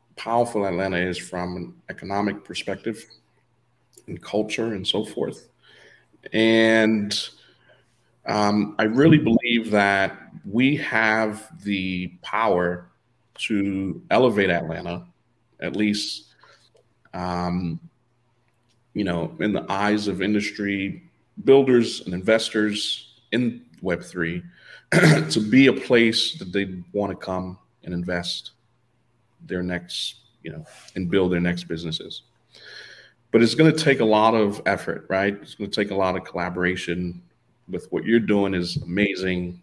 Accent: American